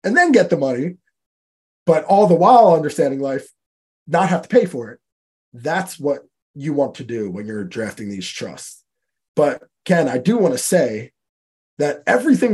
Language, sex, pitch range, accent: English, male, 130-180 Hz, American